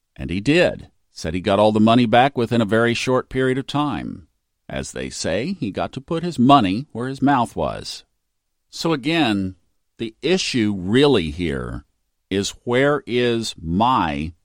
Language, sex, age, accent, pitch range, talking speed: English, male, 50-69, American, 90-125 Hz, 165 wpm